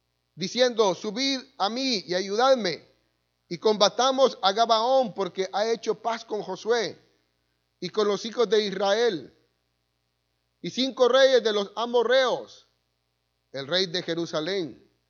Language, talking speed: Spanish, 125 wpm